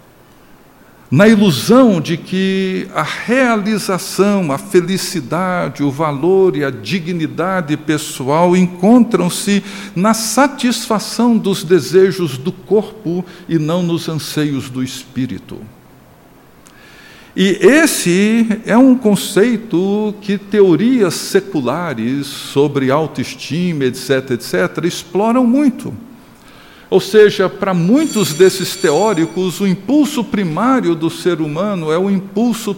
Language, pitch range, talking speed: Portuguese, 160-205 Hz, 105 wpm